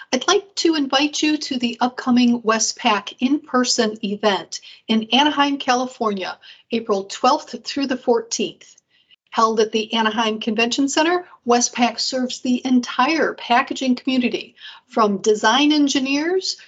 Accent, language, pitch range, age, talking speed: American, English, 215-285 Hz, 40-59, 120 wpm